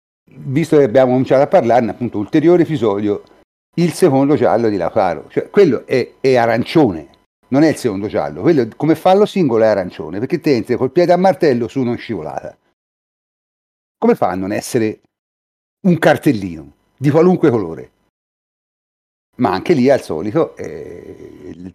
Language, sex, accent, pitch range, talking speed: Italian, male, native, 105-155 Hz, 155 wpm